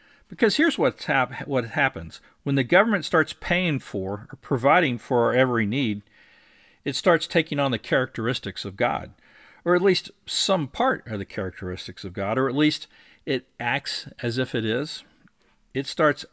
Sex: male